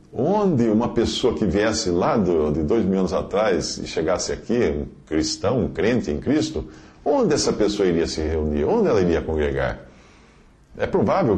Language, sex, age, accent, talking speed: English, male, 50-69, Brazilian, 170 wpm